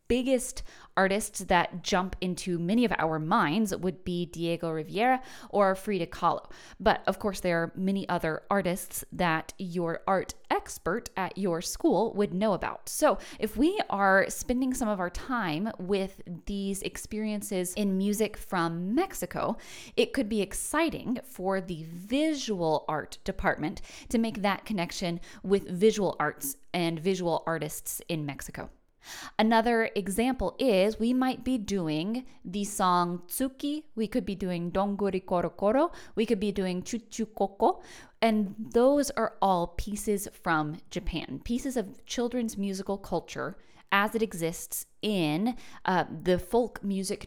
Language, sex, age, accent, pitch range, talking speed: English, female, 20-39, American, 175-225 Hz, 145 wpm